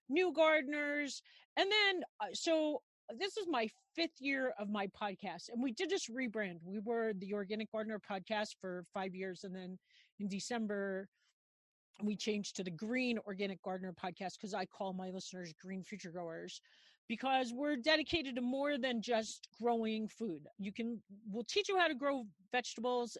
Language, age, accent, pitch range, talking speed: English, 40-59, American, 195-250 Hz, 170 wpm